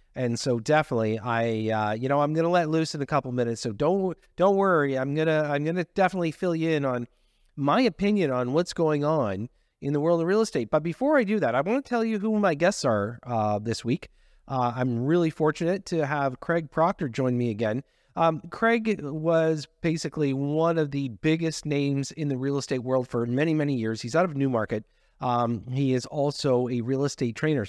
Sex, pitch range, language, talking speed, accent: male, 130-165 Hz, English, 210 wpm, American